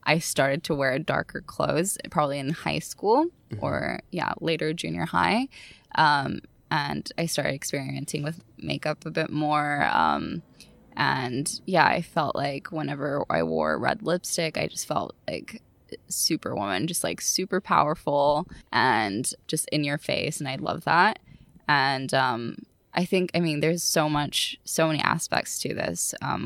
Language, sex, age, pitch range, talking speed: English, female, 20-39, 140-165 Hz, 160 wpm